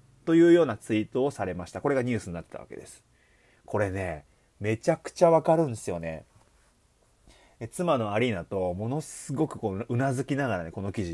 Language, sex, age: Japanese, male, 30-49